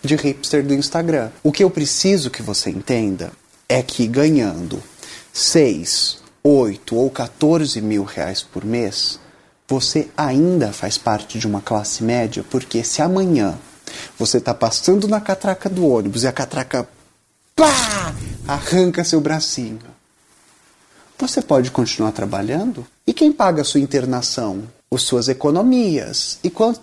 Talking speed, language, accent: 140 wpm, English, Brazilian